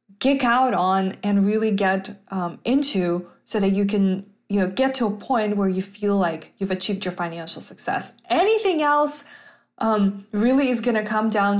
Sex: female